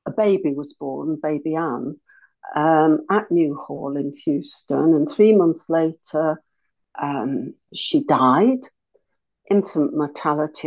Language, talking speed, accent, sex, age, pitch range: English, 120 wpm, British, female, 60-79, 165-225 Hz